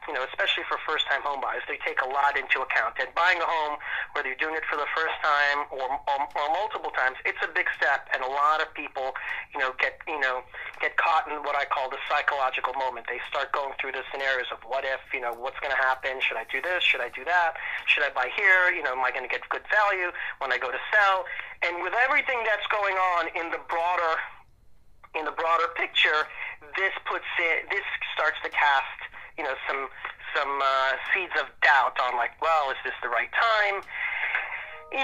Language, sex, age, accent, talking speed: English, male, 40-59, American, 220 wpm